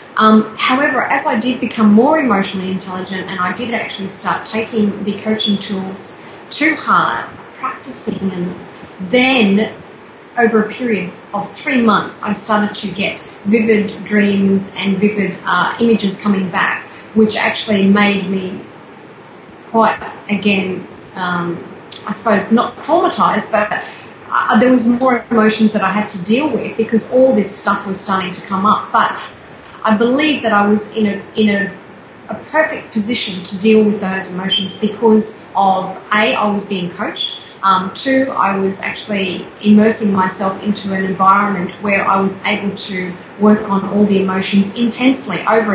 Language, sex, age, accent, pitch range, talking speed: English, female, 30-49, Australian, 195-220 Hz, 155 wpm